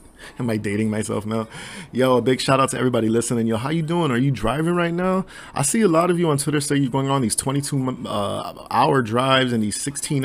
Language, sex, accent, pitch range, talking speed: English, male, American, 105-145 Hz, 245 wpm